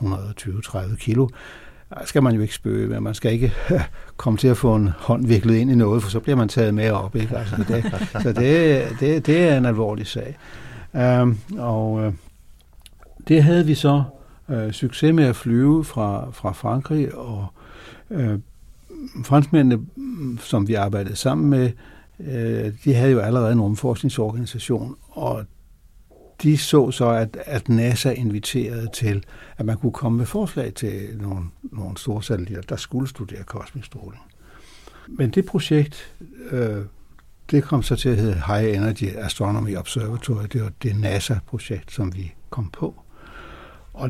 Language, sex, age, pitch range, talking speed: Danish, male, 60-79, 105-135 Hz, 155 wpm